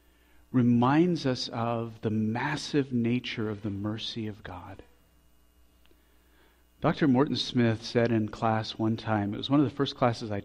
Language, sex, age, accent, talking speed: English, male, 40-59, American, 155 wpm